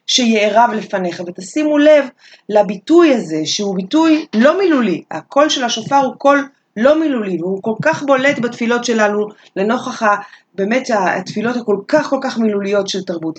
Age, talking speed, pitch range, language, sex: 30-49, 150 wpm, 195-265 Hz, Hebrew, female